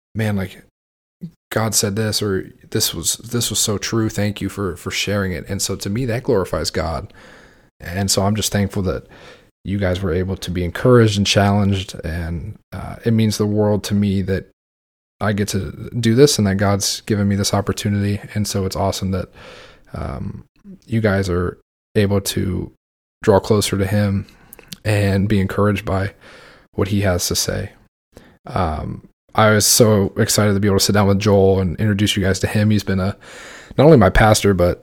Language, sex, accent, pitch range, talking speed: English, male, American, 95-105 Hz, 195 wpm